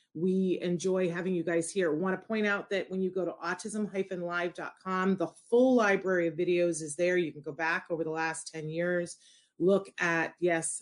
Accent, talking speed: American, 195 wpm